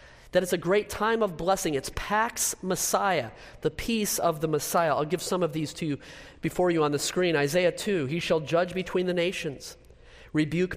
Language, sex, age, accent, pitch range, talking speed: English, male, 40-59, American, 140-185 Hz, 200 wpm